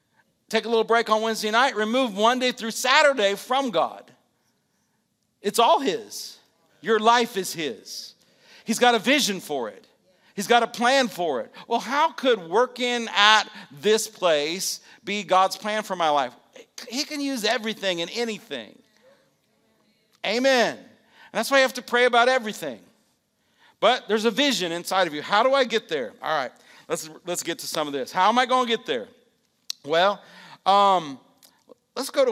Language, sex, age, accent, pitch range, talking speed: English, male, 50-69, American, 155-230 Hz, 175 wpm